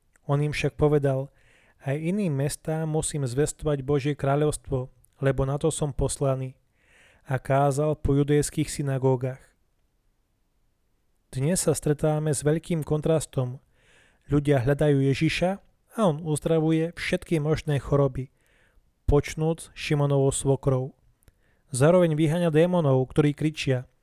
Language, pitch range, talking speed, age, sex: Slovak, 135-160 Hz, 110 wpm, 20-39, male